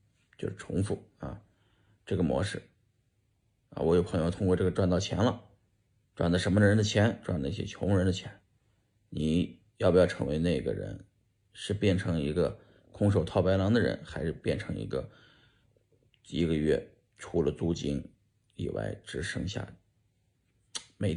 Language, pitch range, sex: Chinese, 90-110 Hz, male